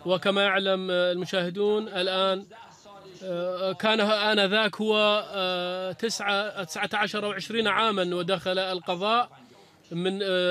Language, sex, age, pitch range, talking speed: Arabic, male, 30-49, 185-210 Hz, 80 wpm